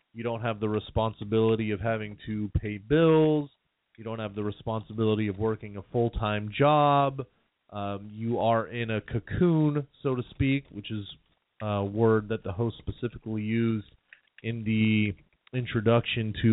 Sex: male